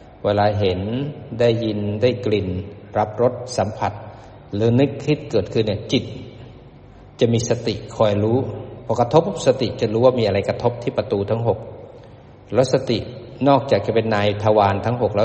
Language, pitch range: Thai, 105-125 Hz